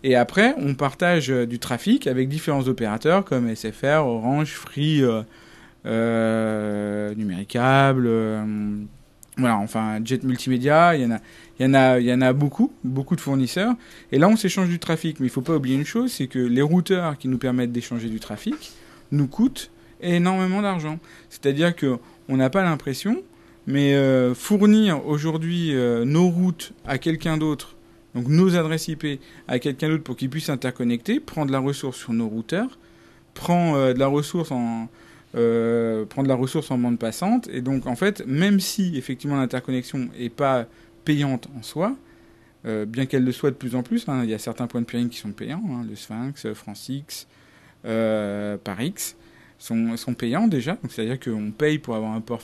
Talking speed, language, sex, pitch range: 180 wpm, French, male, 115-155 Hz